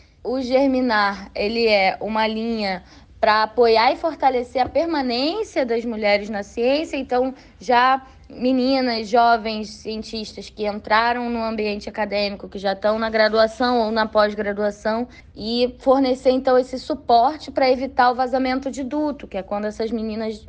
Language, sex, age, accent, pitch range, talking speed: Portuguese, female, 10-29, Brazilian, 215-270 Hz, 145 wpm